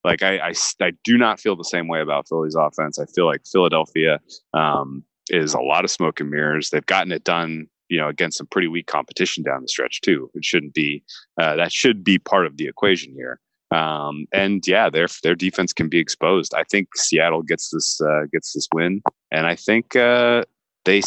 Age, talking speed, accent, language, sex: 30-49, 215 wpm, American, English, male